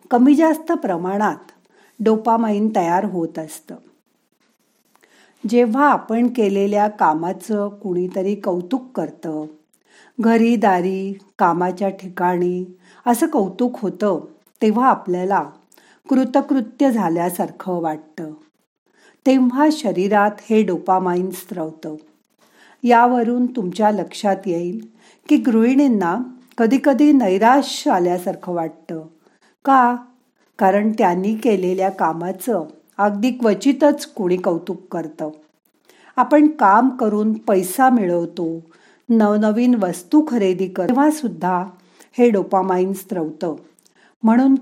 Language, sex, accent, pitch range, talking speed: Marathi, female, native, 180-255 Hz, 85 wpm